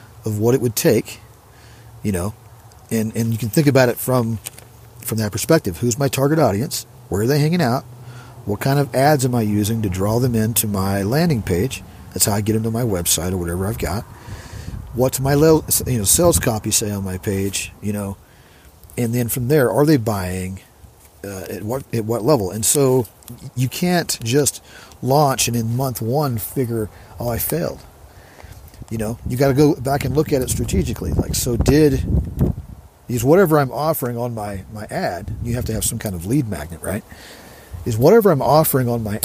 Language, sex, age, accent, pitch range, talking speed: English, male, 40-59, American, 100-130 Hz, 200 wpm